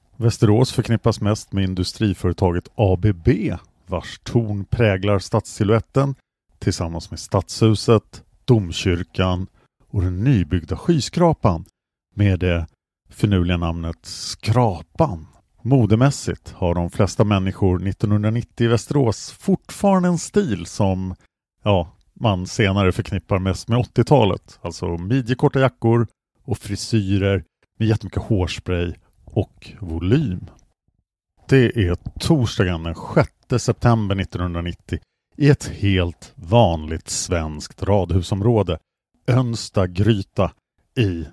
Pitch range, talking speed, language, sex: 90-115 Hz, 100 wpm, English, male